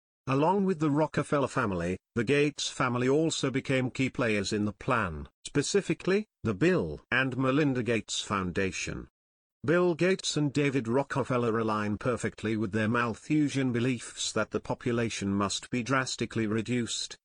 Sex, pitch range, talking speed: male, 110-145 Hz, 140 wpm